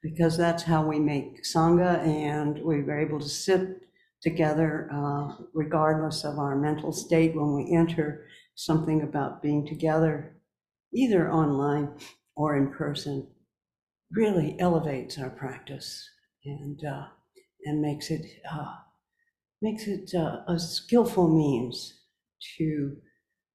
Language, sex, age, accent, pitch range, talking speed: English, female, 60-79, American, 150-185 Hz, 120 wpm